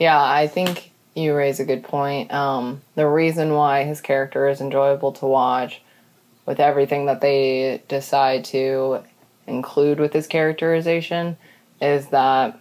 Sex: female